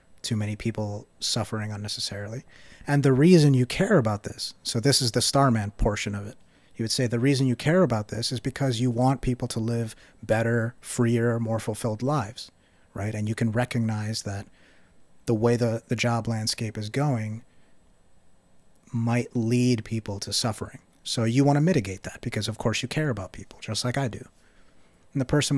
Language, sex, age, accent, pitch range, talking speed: English, male, 30-49, American, 110-130 Hz, 190 wpm